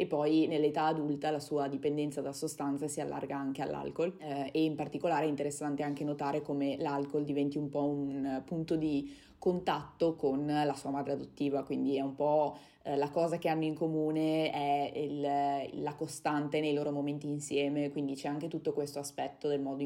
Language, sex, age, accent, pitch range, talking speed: Italian, female, 20-39, native, 140-155 Hz, 185 wpm